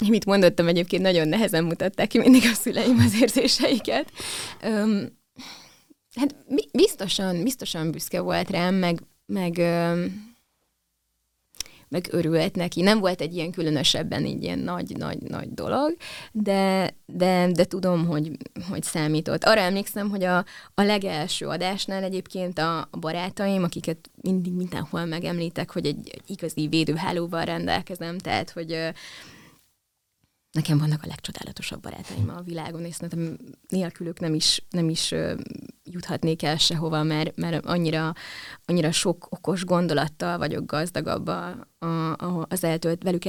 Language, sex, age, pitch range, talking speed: Hungarian, female, 20-39, 160-190 Hz, 130 wpm